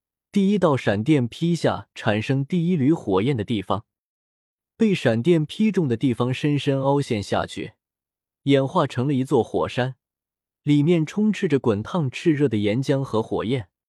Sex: male